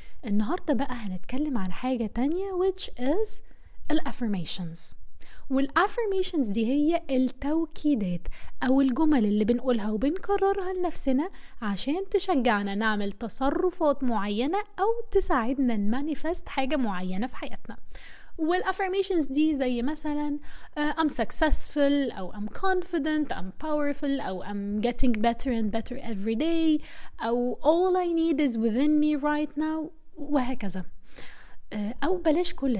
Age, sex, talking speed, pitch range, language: 20-39, female, 120 wpm, 230-310 Hz, Arabic